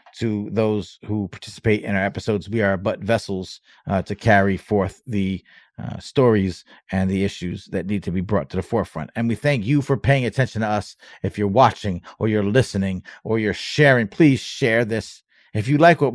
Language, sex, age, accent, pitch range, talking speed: English, male, 40-59, American, 125-190 Hz, 200 wpm